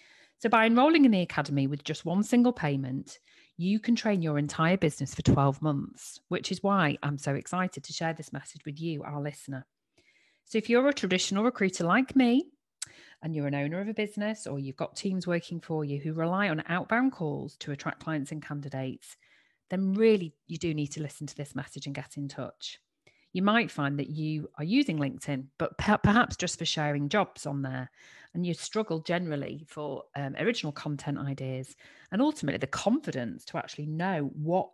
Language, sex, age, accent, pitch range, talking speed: English, female, 40-59, British, 140-190 Hz, 195 wpm